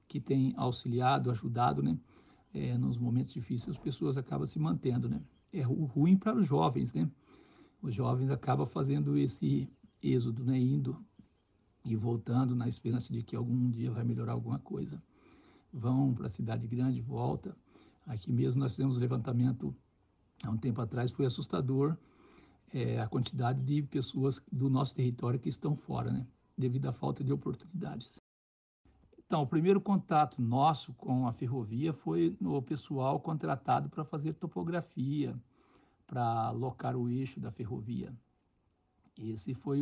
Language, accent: Portuguese, Brazilian